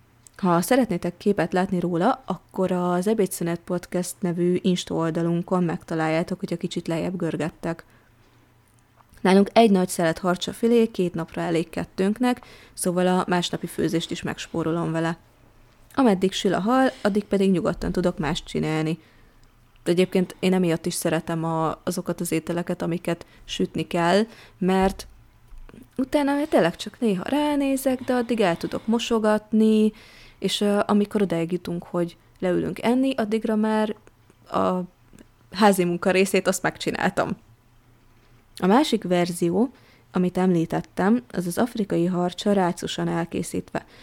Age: 30-49